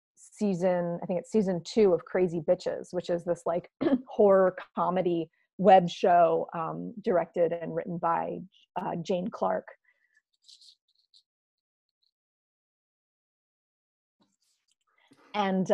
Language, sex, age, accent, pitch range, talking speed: English, female, 30-49, American, 170-210 Hz, 100 wpm